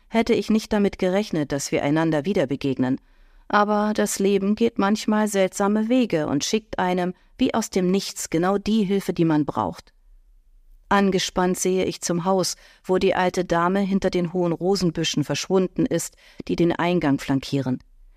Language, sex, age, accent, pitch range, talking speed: German, female, 50-69, German, 160-205 Hz, 160 wpm